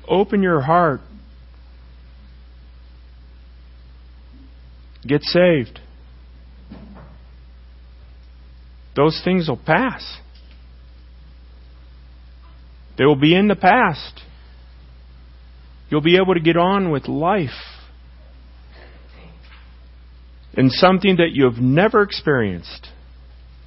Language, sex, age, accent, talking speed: English, male, 40-59, American, 75 wpm